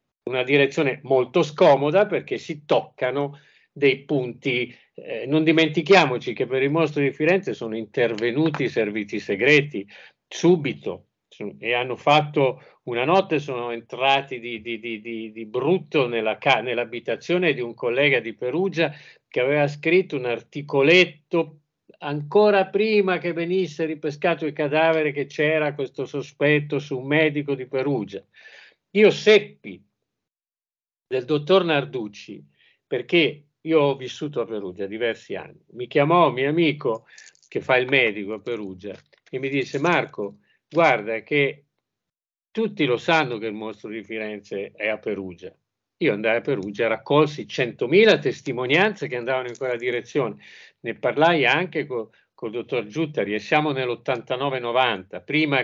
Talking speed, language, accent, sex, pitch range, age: 140 wpm, Italian, native, male, 120-160 Hz, 50-69